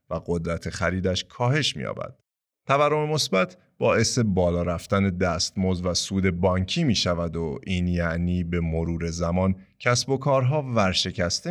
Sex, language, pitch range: male, Persian, 85-120 Hz